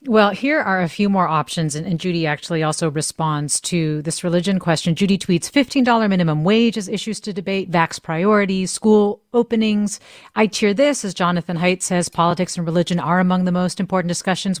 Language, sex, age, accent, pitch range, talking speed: English, female, 30-49, American, 165-205 Hz, 190 wpm